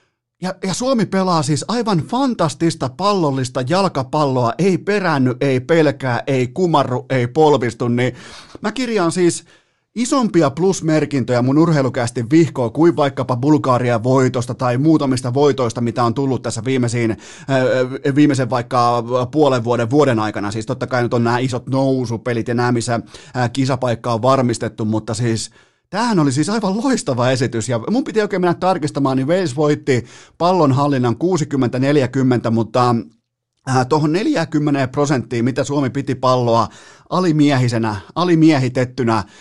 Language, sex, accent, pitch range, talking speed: Finnish, male, native, 125-160 Hz, 130 wpm